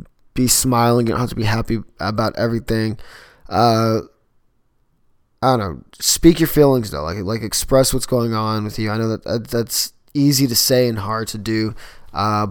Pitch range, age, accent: 110-135 Hz, 20-39, American